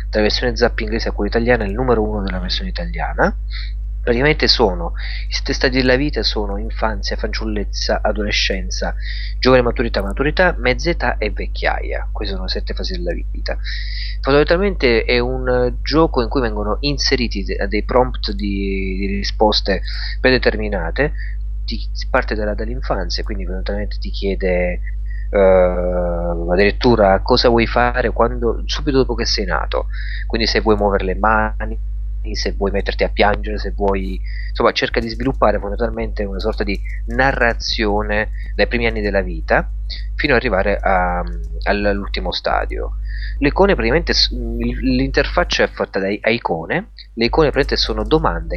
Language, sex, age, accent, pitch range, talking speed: Italian, male, 30-49, native, 95-120 Hz, 135 wpm